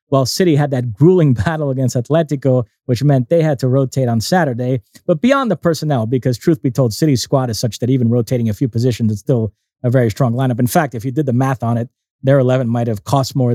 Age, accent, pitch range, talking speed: 30-49, American, 125-155 Hz, 245 wpm